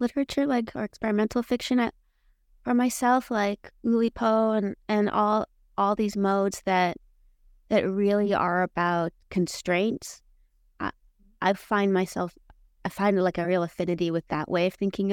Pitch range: 165-210 Hz